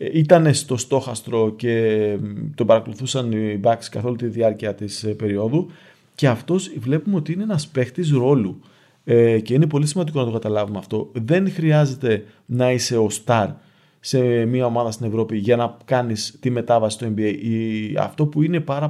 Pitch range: 115-150 Hz